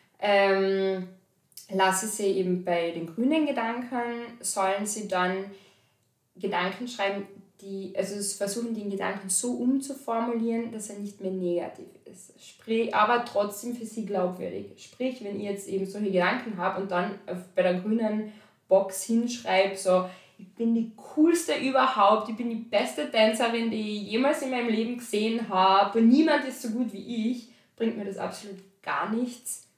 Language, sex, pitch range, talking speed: English, female, 190-230 Hz, 165 wpm